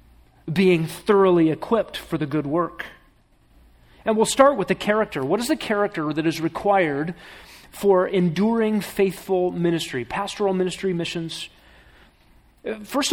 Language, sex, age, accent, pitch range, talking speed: English, male, 40-59, American, 155-195 Hz, 130 wpm